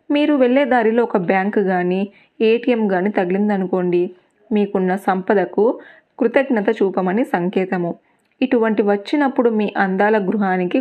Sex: female